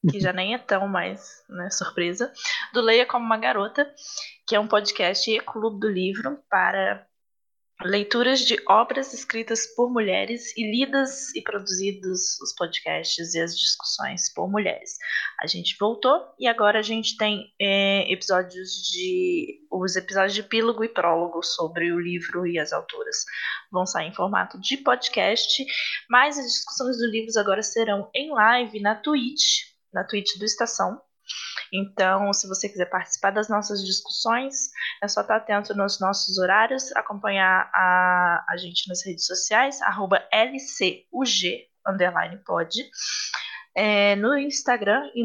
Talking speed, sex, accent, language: 150 wpm, female, Brazilian, Portuguese